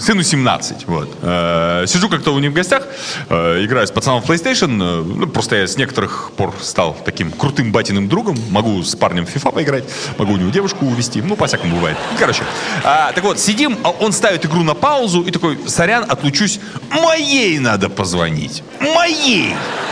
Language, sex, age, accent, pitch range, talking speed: Russian, male, 30-49, native, 120-185 Hz, 170 wpm